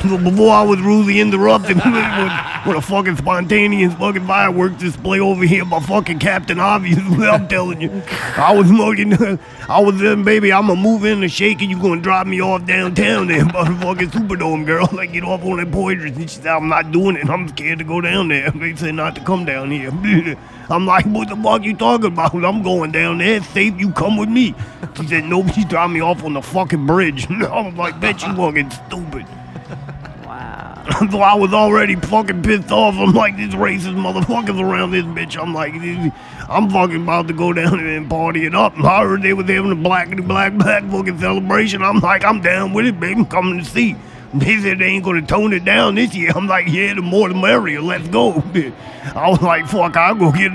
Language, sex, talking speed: English, male, 215 wpm